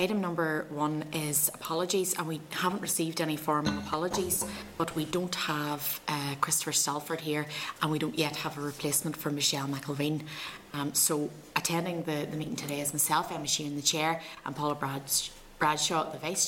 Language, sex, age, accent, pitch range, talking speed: English, female, 30-49, Irish, 150-165 Hz, 180 wpm